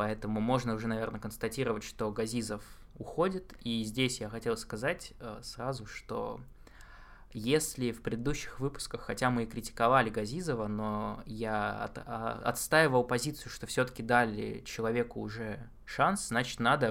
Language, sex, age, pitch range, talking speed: Russian, male, 20-39, 110-130 Hz, 130 wpm